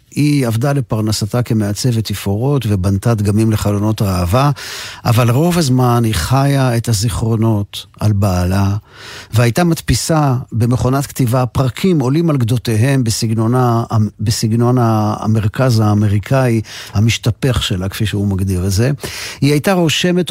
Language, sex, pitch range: Hebrew, male, 105-130 Hz